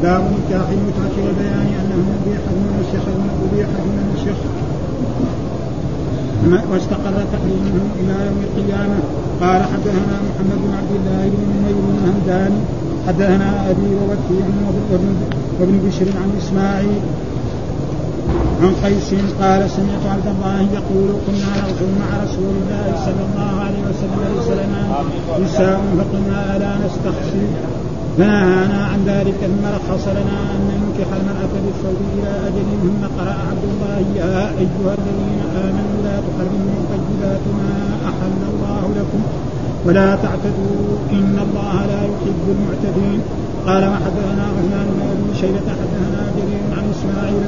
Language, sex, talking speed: Arabic, male, 120 wpm